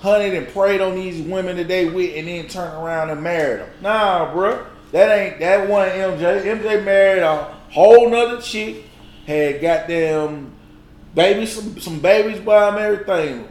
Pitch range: 150-195 Hz